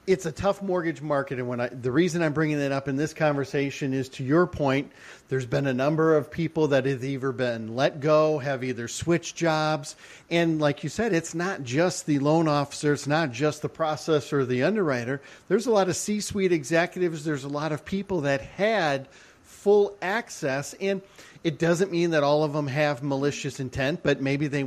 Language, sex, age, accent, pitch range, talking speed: English, male, 50-69, American, 140-165 Hz, 205 wpm